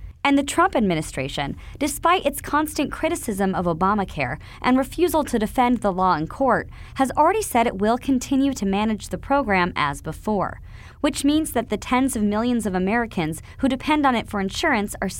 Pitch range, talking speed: 205-300 Hz, 180 wpm